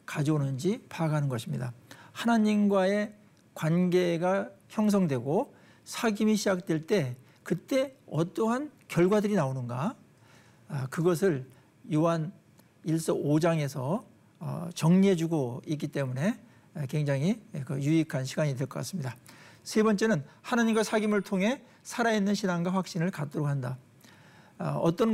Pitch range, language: 145-205 Hz, Korean